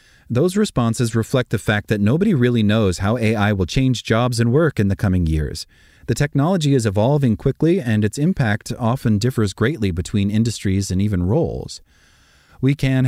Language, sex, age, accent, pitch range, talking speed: English, male, 30-49, American, 100-130 Hz, 175 wpm